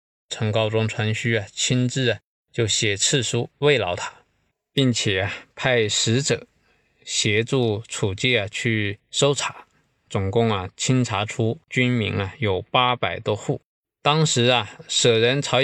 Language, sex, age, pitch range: Chinese, male, 20-39, 110-130 Hz